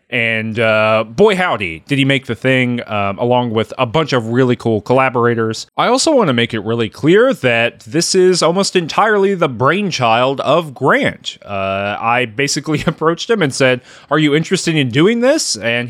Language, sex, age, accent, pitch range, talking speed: English, male, 20-39, American, 120-175 Hz, 185 wpm